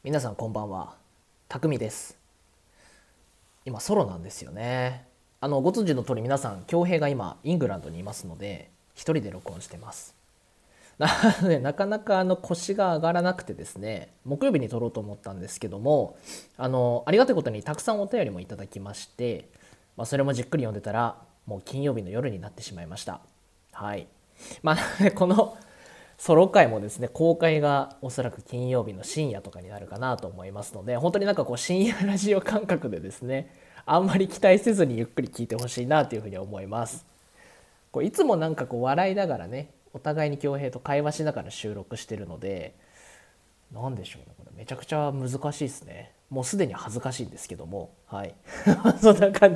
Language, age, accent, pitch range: Japanese, 20-39, native, 105-160 Hz